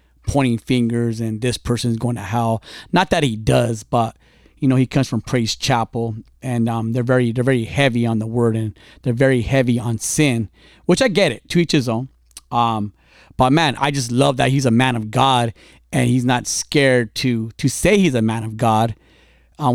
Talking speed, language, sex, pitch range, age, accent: 210 wpm, English, male, 115-140 Hz, 30-49, American